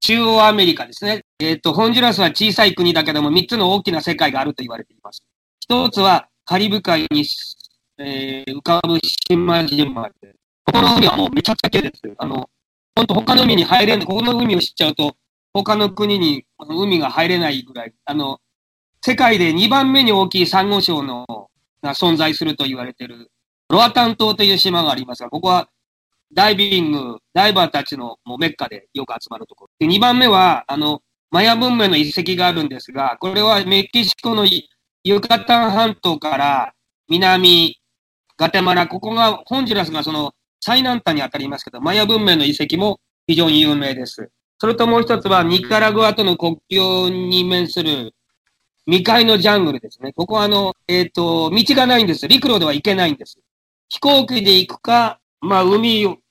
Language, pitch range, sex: English, 155-215 Hz, male